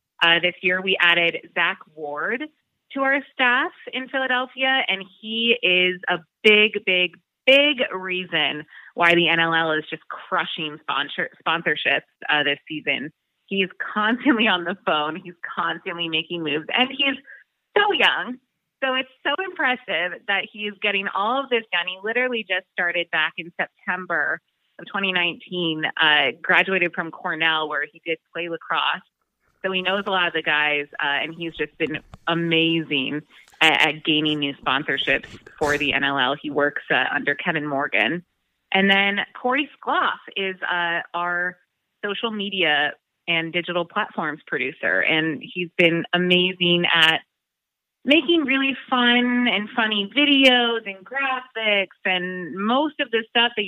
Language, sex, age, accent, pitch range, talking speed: English, female, 20-39, American, 165-225 Hz, 150 wpm